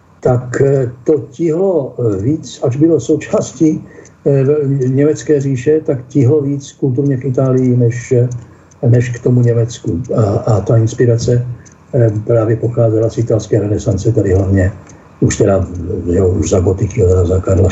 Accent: native